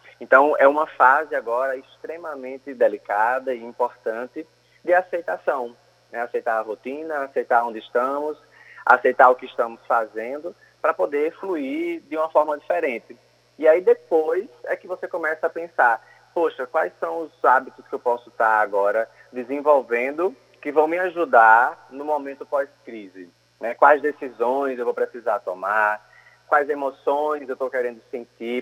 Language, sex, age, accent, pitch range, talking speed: Portuguese, male, 20-39, Brazilian, 120-150 Hz, 145 wpm